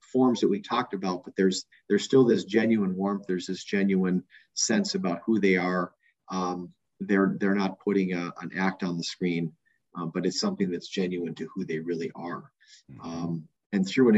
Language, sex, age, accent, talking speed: English, male, 40-59, American, 195 wpm